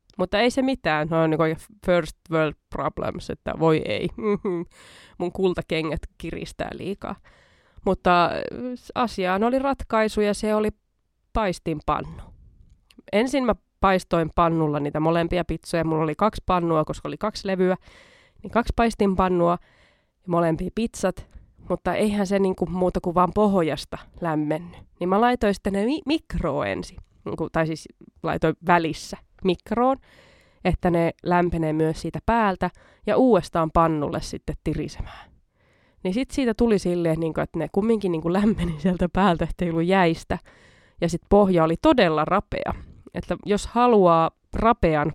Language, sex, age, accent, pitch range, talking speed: Finnish, female, 20-39, native, 165-205 Hz, 135 wpm